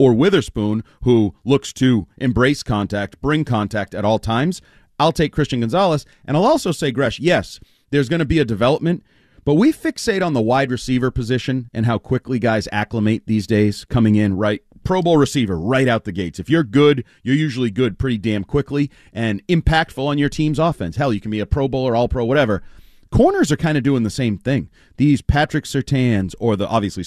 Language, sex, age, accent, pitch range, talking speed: English, male, 30-49, American, 105-145 Hz, 205 wpm